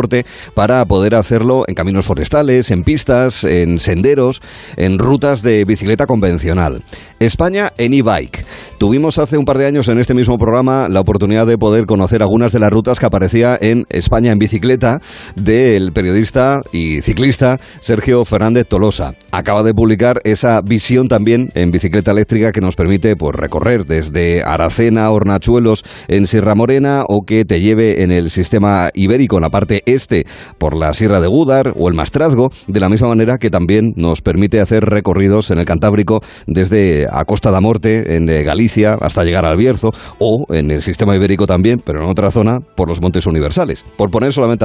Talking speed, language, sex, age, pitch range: 175 wpm, Spanish, male, 40-59, 95-120 Hz